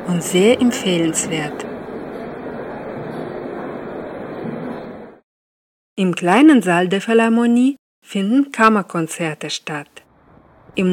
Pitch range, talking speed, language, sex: 160-220 Hz, 65 wpm, German, female